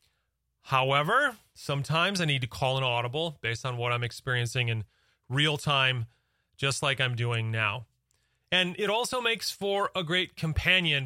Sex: male